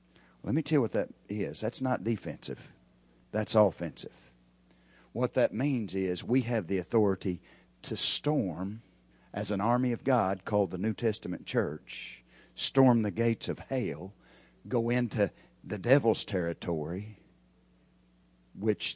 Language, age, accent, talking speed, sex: English, 50-69, American, 135 wpm, male